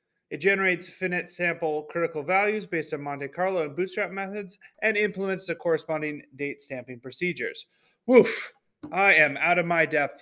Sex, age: male, 30-49